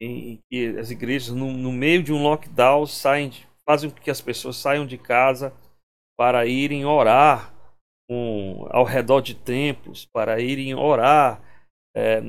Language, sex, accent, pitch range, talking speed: Portuguese, male, Brazilian, 125-170 Hz, 155 wpm